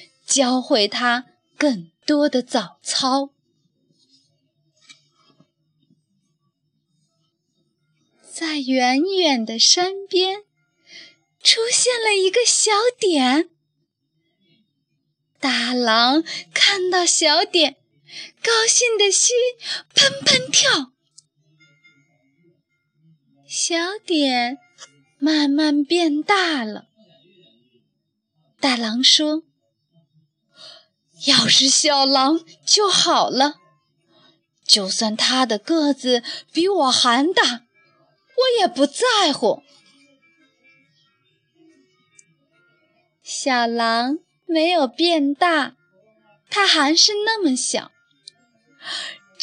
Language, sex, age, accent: Chinese, female, 20-39, native